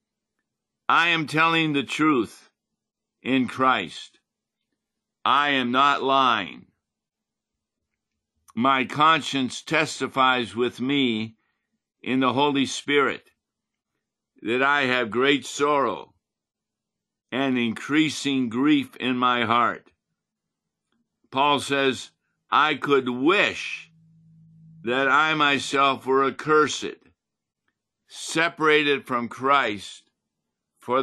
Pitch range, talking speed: 125-145 Hz, 85 wpm